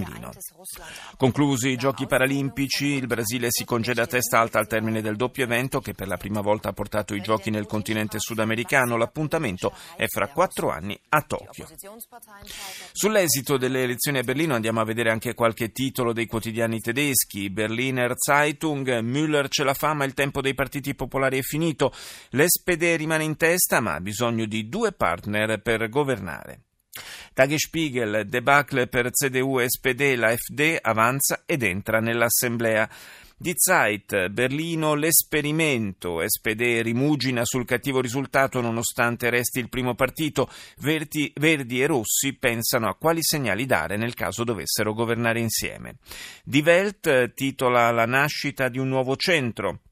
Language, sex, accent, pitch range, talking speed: Italian, male, native, 115-145 Hz, 145 wpm